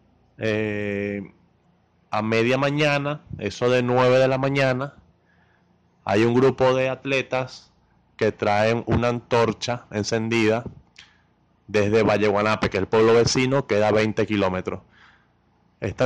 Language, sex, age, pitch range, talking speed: Spanish, male, 30-49, 110-135 Hz, 120 wpm